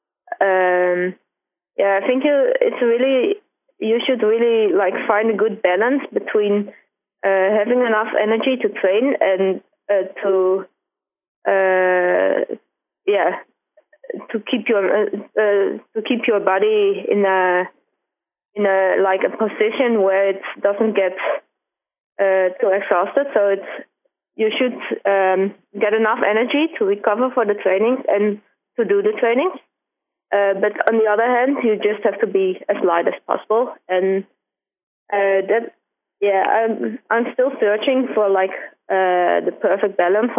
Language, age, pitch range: German, 20-39, 195-250 Hz